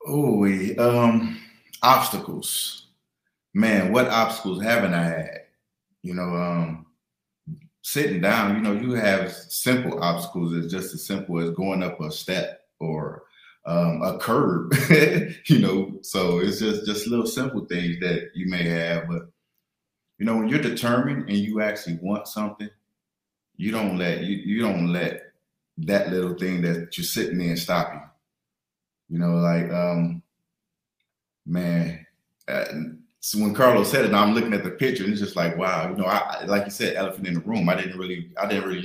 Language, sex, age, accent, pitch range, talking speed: English, male, 30-49, American, 85-110 Hz, 170 wpm